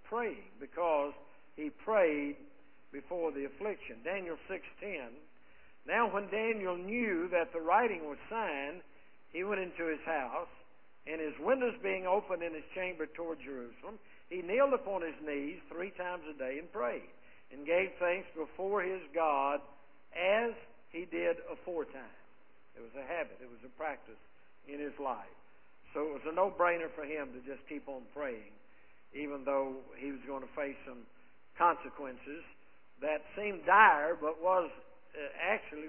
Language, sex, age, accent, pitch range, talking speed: English, male, 60-79, American, 145-185 Hz, 155 wpm